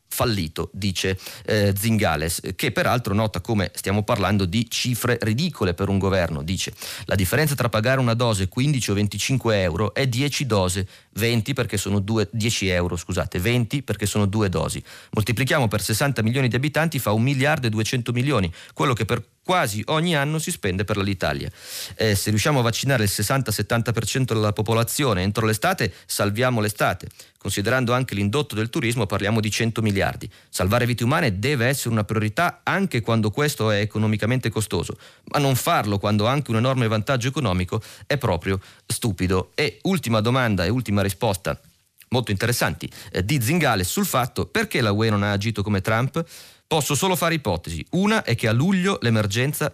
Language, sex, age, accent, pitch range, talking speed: Italian, male, 30-49, native, 100-130 Hz, 170 wpm